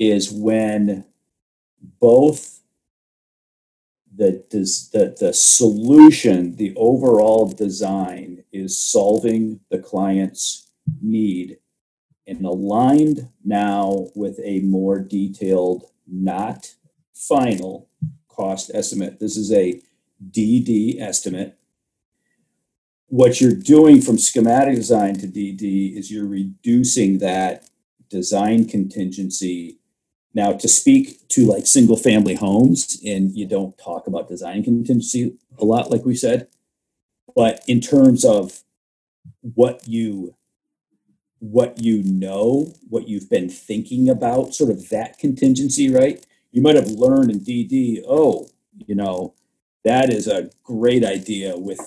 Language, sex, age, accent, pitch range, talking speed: English, male, 50-69, American, 95-125 Hz, 110 wpm